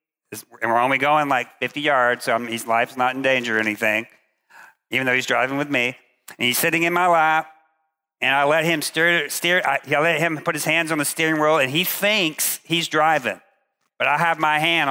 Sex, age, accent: male, 50-69, American